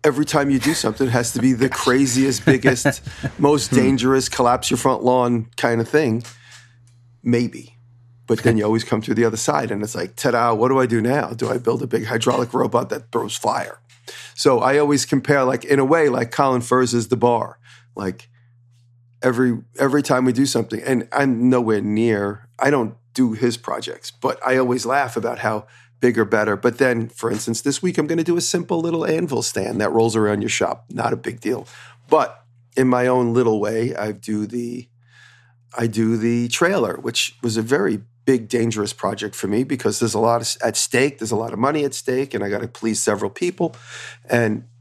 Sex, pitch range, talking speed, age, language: male, 115-130 Hz, 210 wpm, 40-59, English